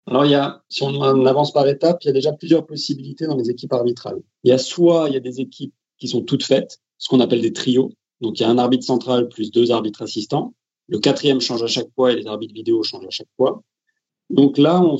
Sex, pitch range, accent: male, 125-170 Hz, French